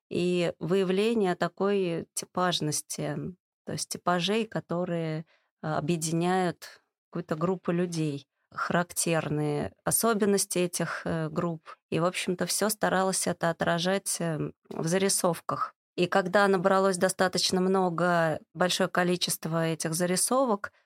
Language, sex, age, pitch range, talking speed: Russian, female, 20-39, 170-195 Hz, 100 wpm